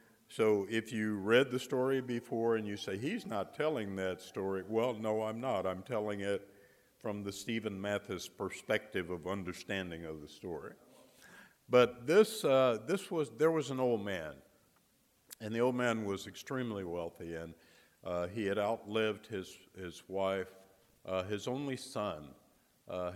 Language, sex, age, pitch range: English, male, 60-79, 95-120 Hz